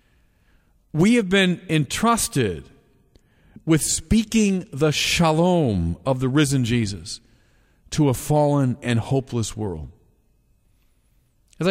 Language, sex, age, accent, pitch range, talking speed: English, male, 40-59, American, 120-180 Hz, 95 wpm